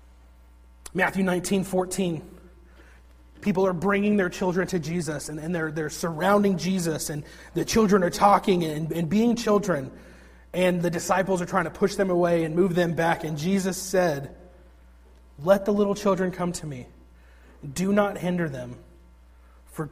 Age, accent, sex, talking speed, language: 30-49, American, male, 160 wpm, English